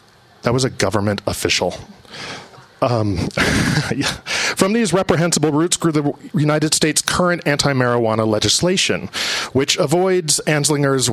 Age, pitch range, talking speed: 40-59, 120-165 Hz, 110 wpm